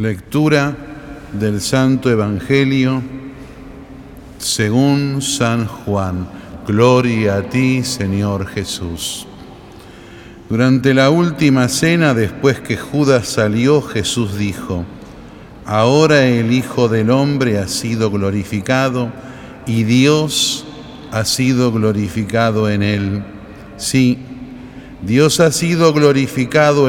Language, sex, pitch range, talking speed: Spanish, male, 110-140 Hz, 95 wpm